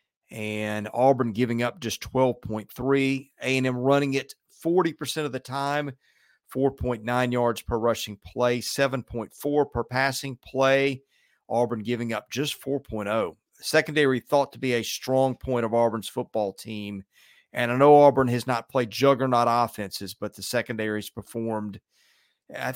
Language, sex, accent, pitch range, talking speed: English, male, American, 110-135 Hz, 140 wpm